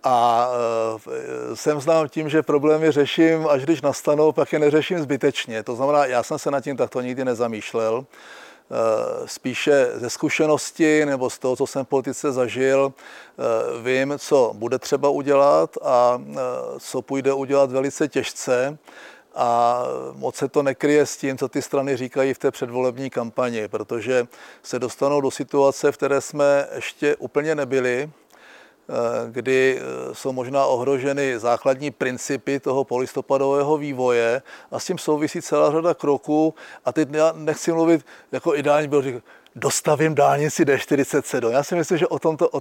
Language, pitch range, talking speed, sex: Czech, 130-155 Hz, 155 wpm, male